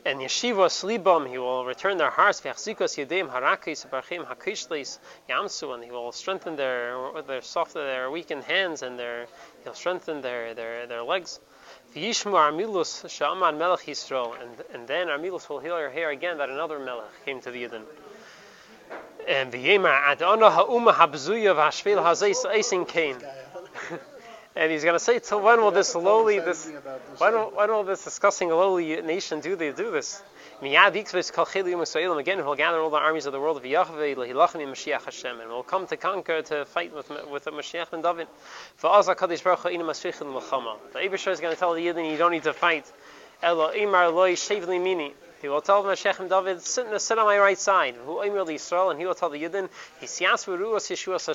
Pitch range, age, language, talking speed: 150-195 Hz, 30-49, English, 145 wpm